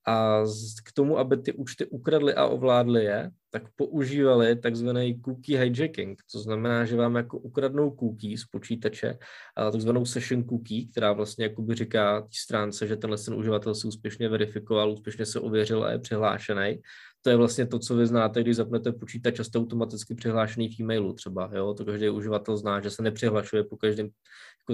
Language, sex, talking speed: Czech, male, 175 wpm